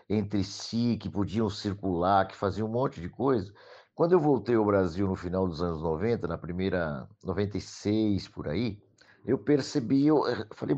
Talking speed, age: 160 wpm, 60-79